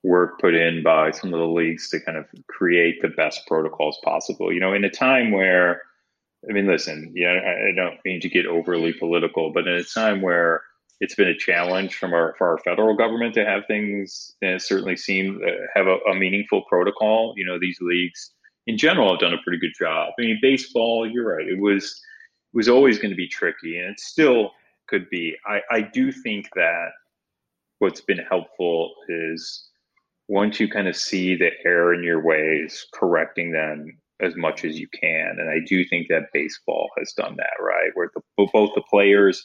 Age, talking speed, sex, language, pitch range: 30-49, 200 wpm, male, English, 85-100 Hz